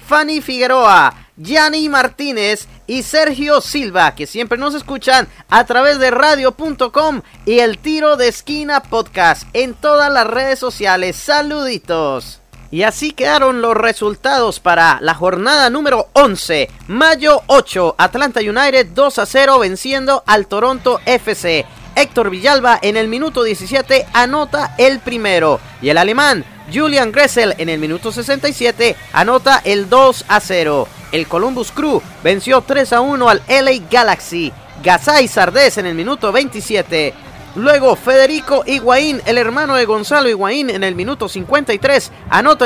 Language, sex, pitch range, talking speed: English, male, 210-280 Hz, 140 wpm